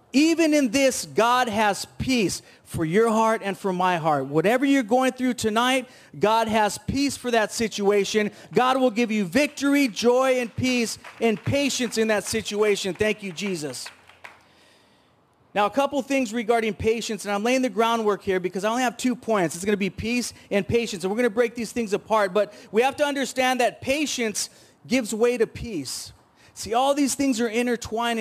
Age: 30-49